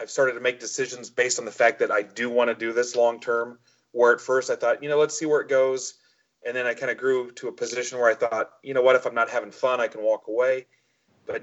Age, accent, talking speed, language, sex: 30-49, American, 285 wpm, English, male